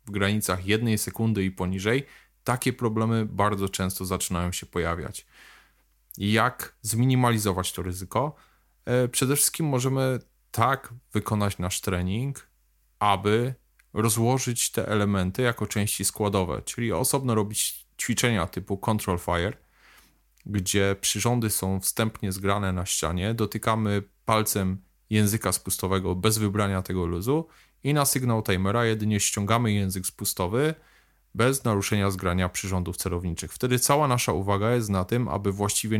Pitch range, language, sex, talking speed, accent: 95-115 Hz, Polish, male, 125 wpm, native